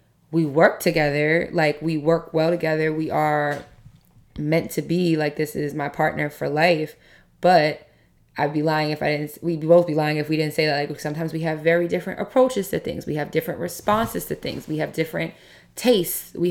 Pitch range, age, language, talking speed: 150-175 Hz, 20-39, English, 205 wpm